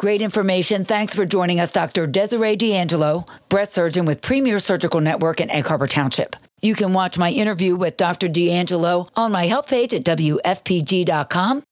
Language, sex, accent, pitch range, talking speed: English, female, American, 170-230 Hz, 170 wpm